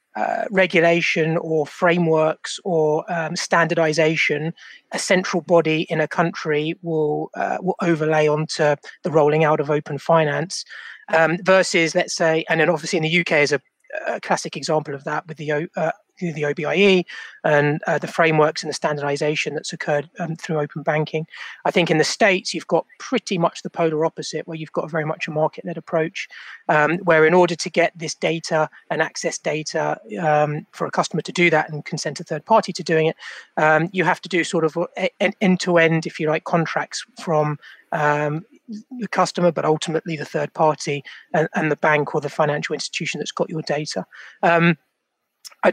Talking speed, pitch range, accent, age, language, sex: 185 wpm, 155-175 Hz, British, 30-49, English, male